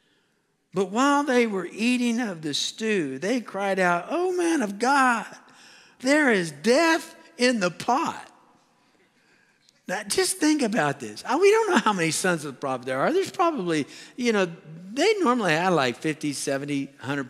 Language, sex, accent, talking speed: English, male, American, 165 wpm